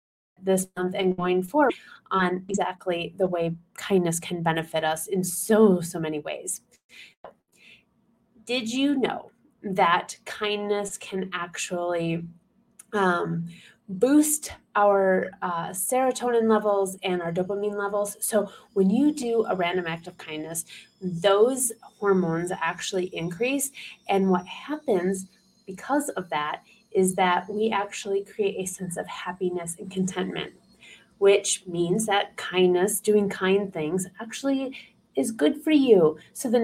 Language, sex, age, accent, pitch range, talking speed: English, female, 30-49, American, 180-225 Hz, 130 wpm